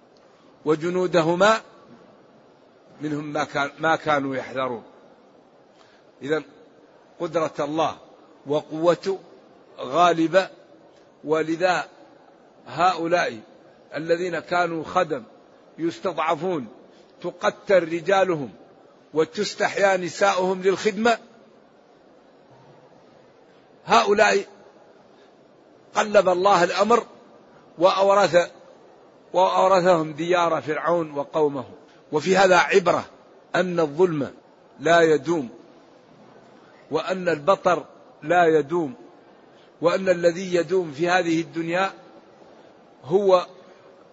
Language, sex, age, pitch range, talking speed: Arabic, male, 50-69, 160-190 Hz, 65 wpm